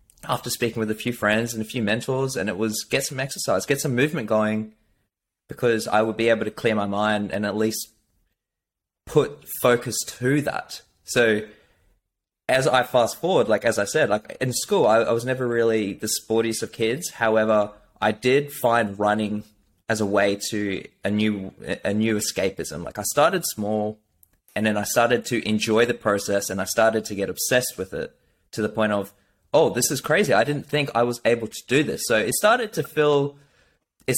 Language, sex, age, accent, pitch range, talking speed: English, male, 20-39, Australian, 105-130 Hz, 200 wpm